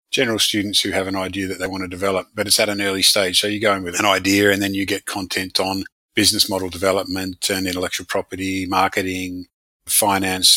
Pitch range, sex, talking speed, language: 95-105 Hz, male, 215 wpm, English